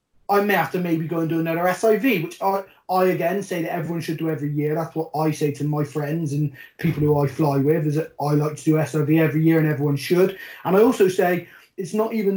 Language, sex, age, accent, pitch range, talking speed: English, male, 30-49, British, 165-205 Hz, 255 wpm